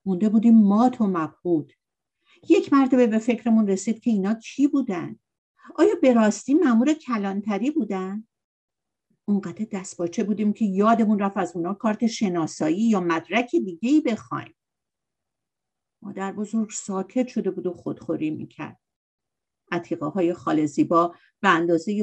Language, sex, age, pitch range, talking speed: Persian, female, 50-69, 170-230 Hz, 130 wpm